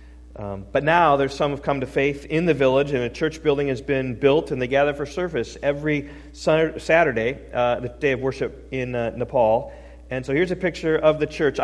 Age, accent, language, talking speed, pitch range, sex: 40-59, American, English, 215 wpm, 105-150 Hz, male